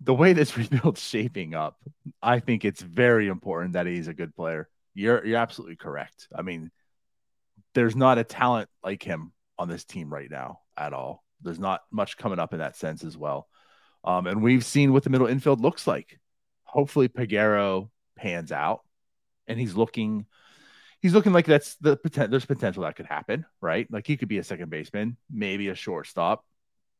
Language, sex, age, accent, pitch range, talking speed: English, male, 30-49, American, 100-135 Hz, 185 wpm